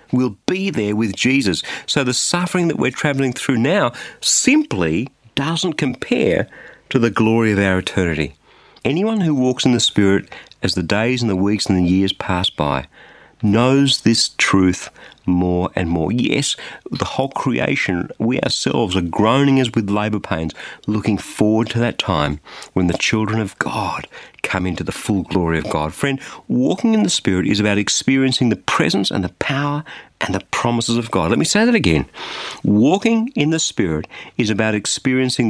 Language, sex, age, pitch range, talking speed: English, male, 50-69, 95-135 Hz, 175 wpm